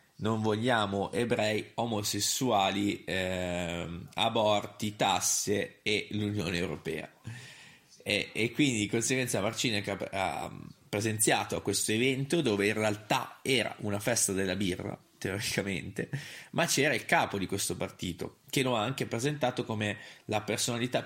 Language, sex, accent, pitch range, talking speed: Italian, male, native, 100-120 Hz, 130 wpm